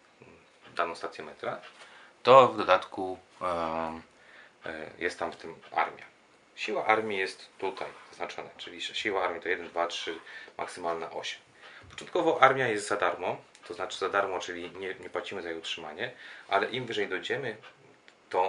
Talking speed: 155 wpm